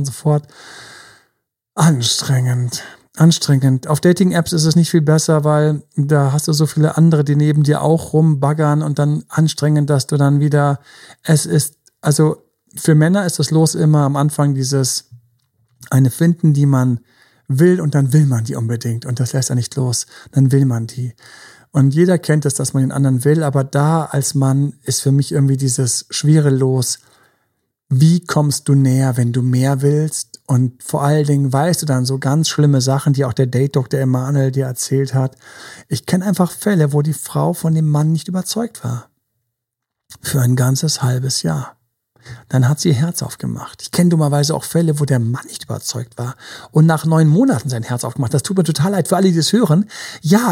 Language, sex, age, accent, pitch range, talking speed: German, male, 50-69, German, 130-160 Hz, 195 wpm